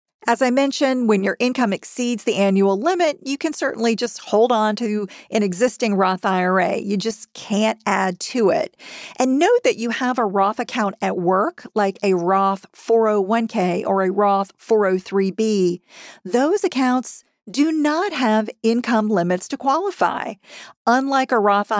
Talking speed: 155 wpm